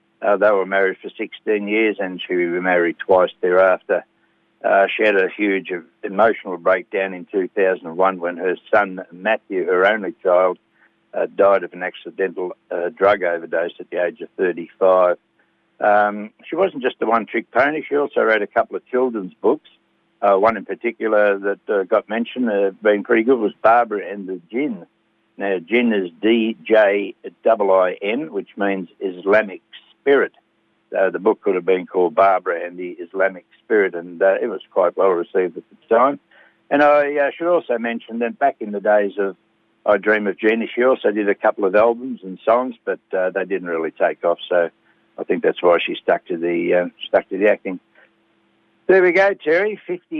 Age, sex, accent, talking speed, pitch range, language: 60-79, male, Australian, 190 wpm, 95-130 Hz, English